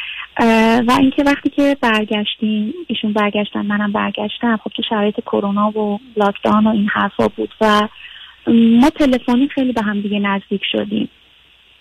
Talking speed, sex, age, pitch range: 130 wpm, female, 50-69, 210-240 Hz